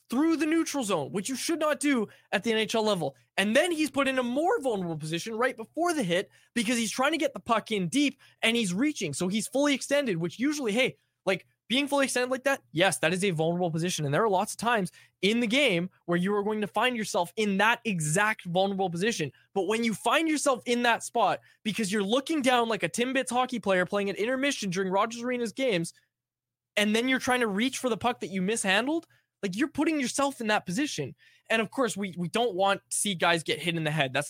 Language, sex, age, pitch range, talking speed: English, male, 20-39, 180-250 Hz, 240 wpm